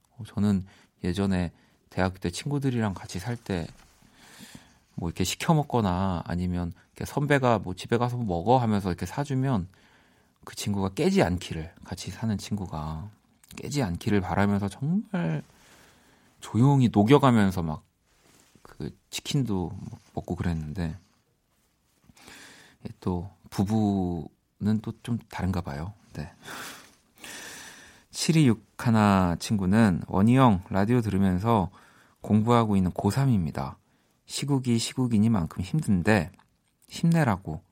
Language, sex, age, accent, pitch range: Korean, male, 40-59, native, 90-120 Hz